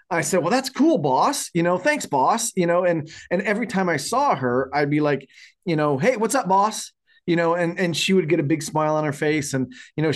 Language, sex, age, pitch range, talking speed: English, male, 30-49, 135-170 Hz, 260 wpm